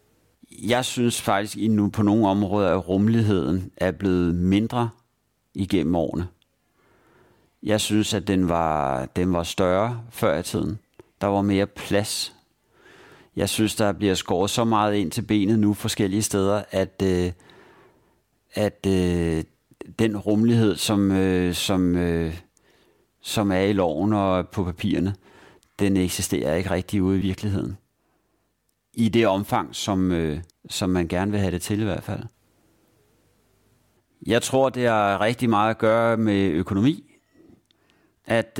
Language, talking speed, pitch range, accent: English, 140 wpm, 95-110 Hz, Danish